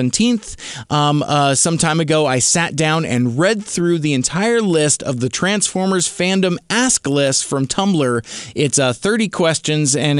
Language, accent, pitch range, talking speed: English, American, 130-165 Hz, 160 wpm